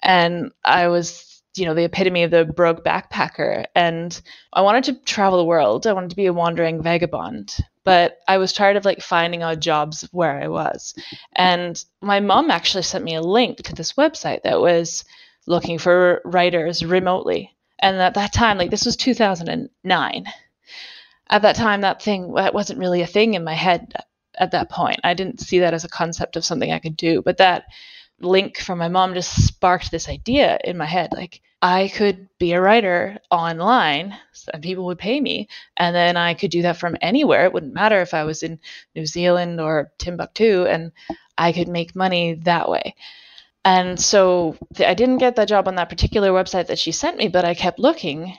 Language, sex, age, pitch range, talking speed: English, female, 20-39, 170-195 Hz, 200 wpm